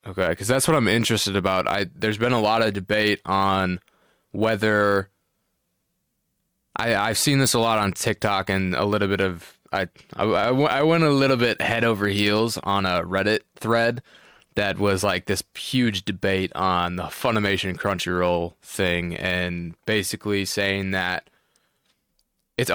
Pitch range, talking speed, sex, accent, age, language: 95-115 Hz, 155 wpm, male, American, 20-39, English